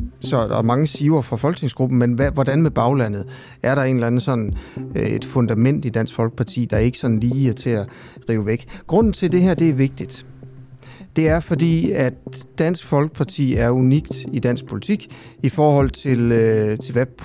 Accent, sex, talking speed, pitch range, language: native, male, 190 wpm, 120-150 Hz, Danish